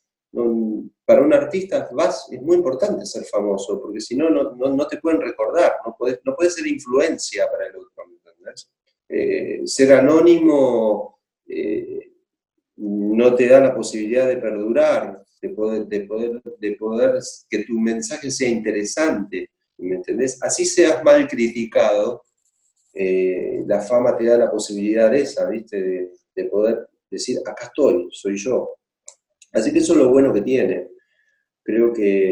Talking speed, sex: 150 wpm, male